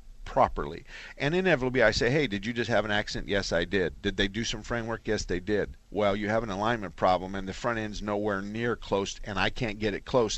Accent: American